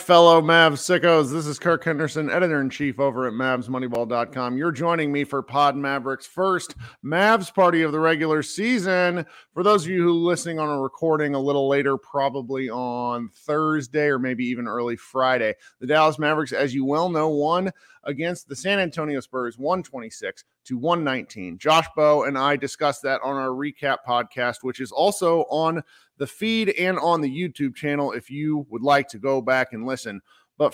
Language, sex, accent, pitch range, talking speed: English, male, American, 135-170 Hz, 180 wpm